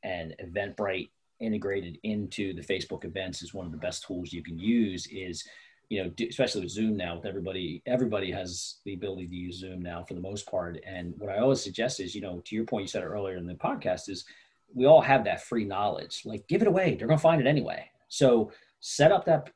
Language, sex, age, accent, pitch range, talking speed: English, male, 40-59, American, 95-120 Hz, 235 wpm